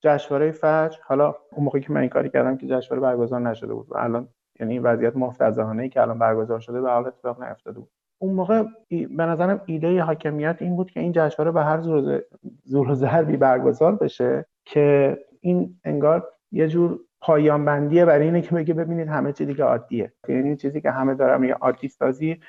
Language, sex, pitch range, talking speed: Persian, male, 130-160 Hz, 190 wpm